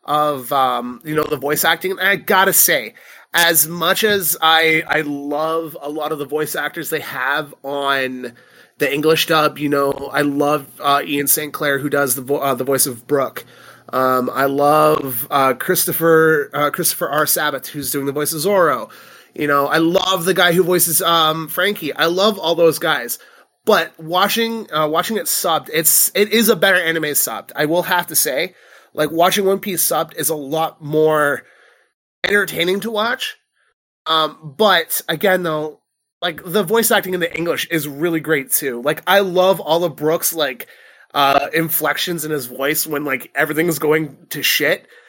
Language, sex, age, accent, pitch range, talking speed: English, male, 30-49, American, 145-180 Hz, 185 wpm